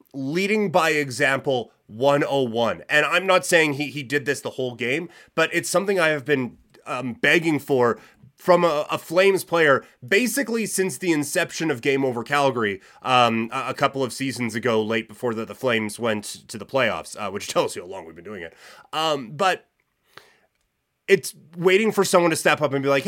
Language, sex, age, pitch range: English, male, 30-49, 130-170 Hz